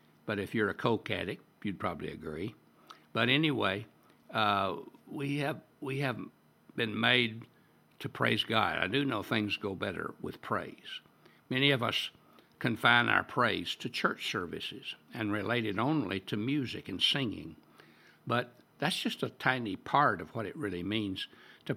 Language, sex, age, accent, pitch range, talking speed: English, male, 60-79, American, 95-125 Hz, 160 wpm